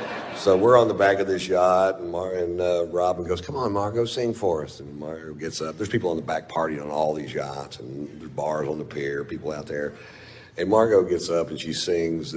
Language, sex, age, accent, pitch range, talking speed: English, male, 50-69, American, 80-105 Hz, 245 wpm